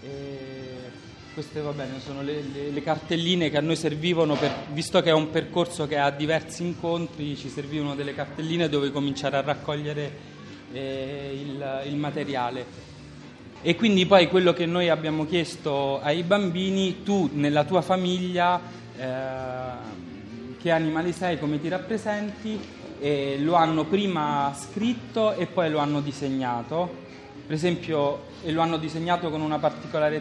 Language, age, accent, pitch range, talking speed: Italian, 30-49, native, 140-170 Hz, 140 wpm